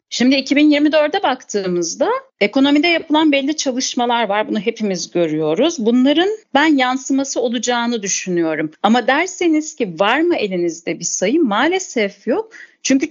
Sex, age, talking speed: female, 40-59, 125 wpm